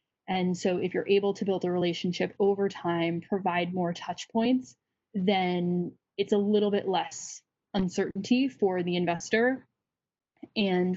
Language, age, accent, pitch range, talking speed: English, 10-29, American, 175-205 Hz, 140 wpm